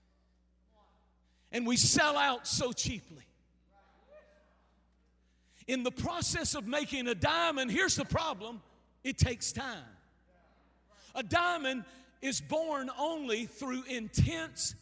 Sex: male